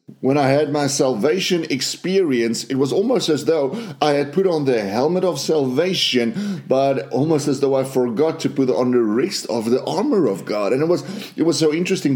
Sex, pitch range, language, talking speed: male, 130-175 Hz, English, 205 wpm